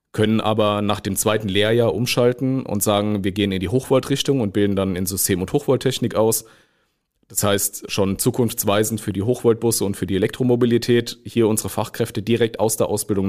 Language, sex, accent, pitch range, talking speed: German, male, German, 105-120 Hz, 180 wpm